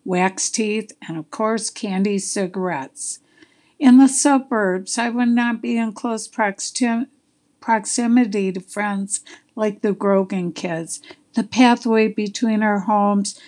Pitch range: 190-235 Hz